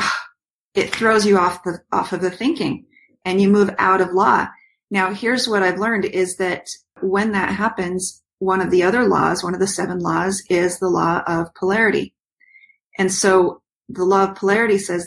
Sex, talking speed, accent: female, 185 wpm, American